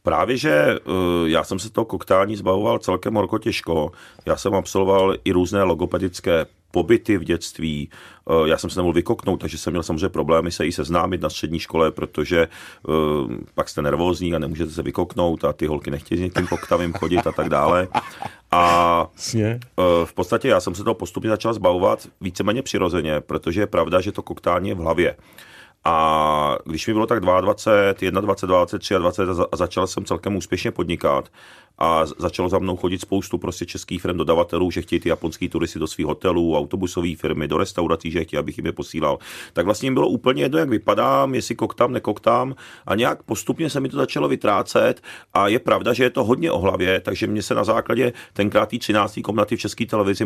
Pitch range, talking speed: 85-100 Hz, 190 wpm